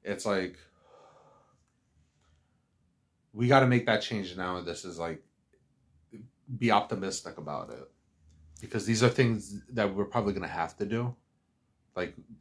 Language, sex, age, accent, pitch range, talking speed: English, male, 30-49, American, 80-110 Hz, 145 wpm